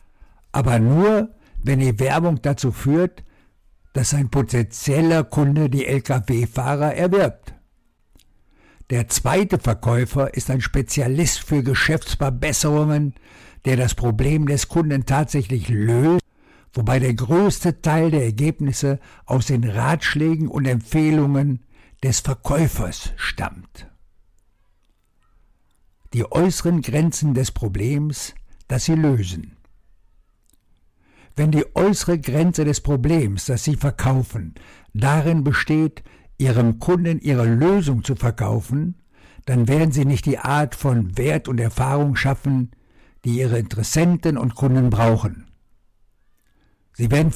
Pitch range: 110-150 Hz